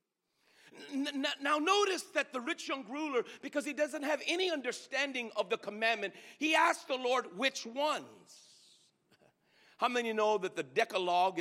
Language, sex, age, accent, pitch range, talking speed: English, male, 50-69, American, 215-295 Hz, 145 wpm